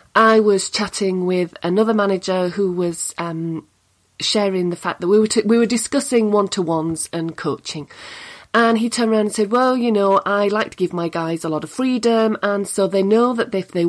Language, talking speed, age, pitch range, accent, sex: English, 205 wpm, 40-59, 180-230 Hz, British, female